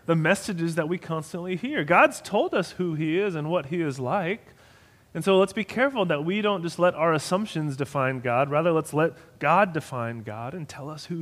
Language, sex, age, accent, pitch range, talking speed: English, male, 30-49, American, 135-190 Hz, 220 wpm